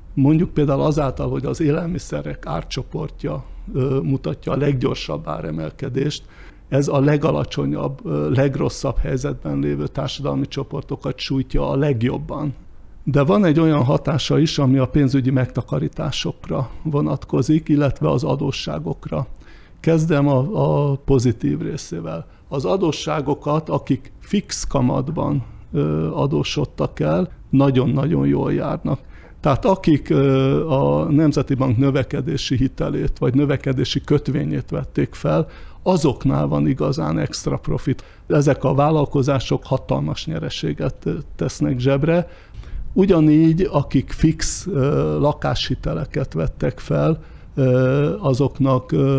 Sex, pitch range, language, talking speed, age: male, 130-150 Hz, Hungarian, 100 wpm, 60-79